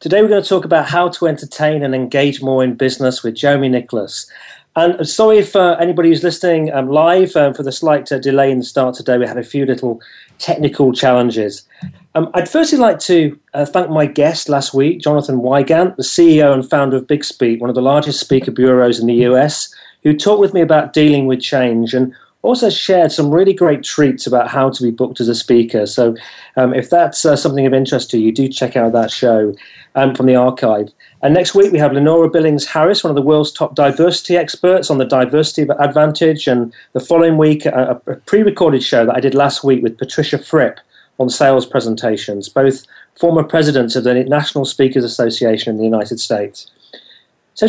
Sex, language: male, English